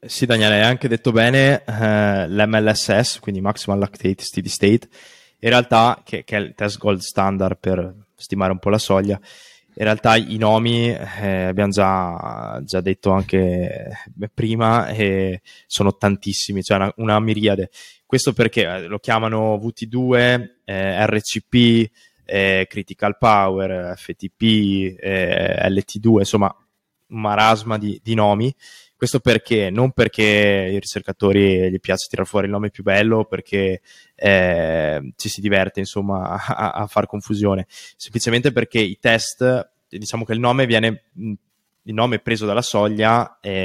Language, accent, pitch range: Italian, native, 95-115 Hz